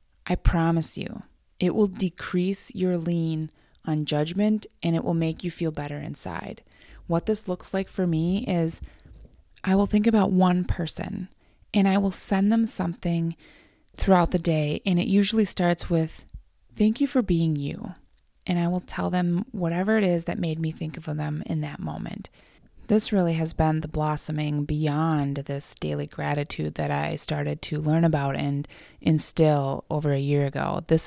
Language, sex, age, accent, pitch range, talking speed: English, female, 20-39, American, 150-190 Hz, 175 wpm